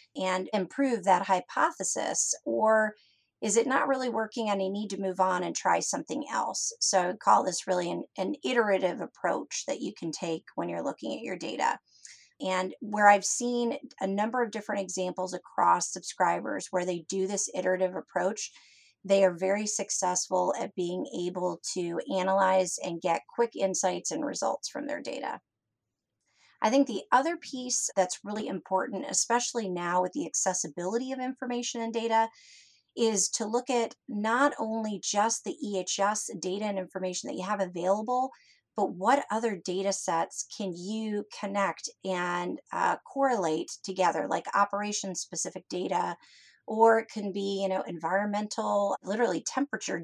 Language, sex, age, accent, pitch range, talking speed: English, female, 30-49, American, 185-225 Hz, 160 wpm